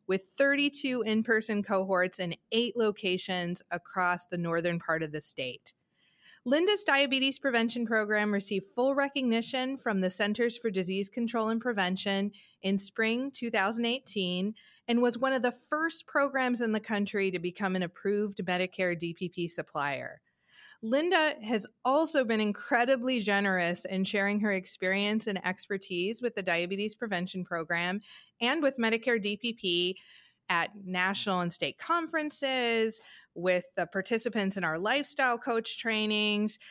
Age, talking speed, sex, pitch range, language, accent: 30-49, 135 wpm, female, 185-240 Hz, English, American